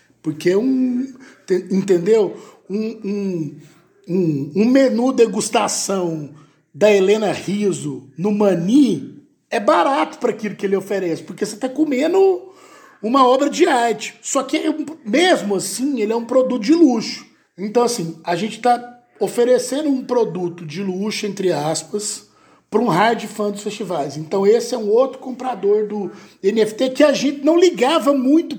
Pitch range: 195-265 Hz